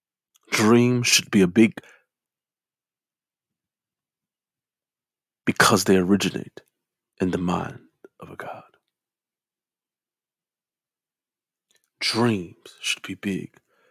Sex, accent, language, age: male, American, English, 40-59